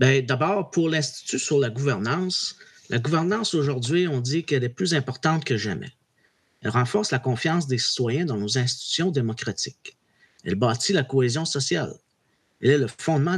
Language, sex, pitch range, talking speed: French, male, 125-175 Hz, 165 wpm